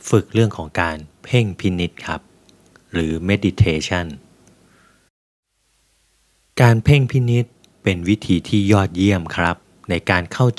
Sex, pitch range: male, 85-115 Hz